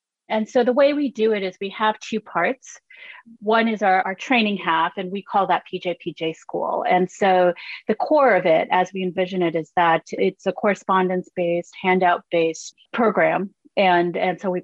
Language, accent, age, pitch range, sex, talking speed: English, American, 30-49, 175-195 Hz, female, 190 wpm